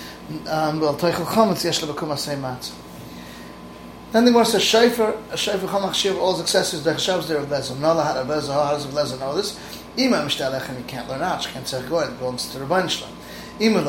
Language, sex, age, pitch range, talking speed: English, male, 30-49, 145-190 Hz, 85 wpm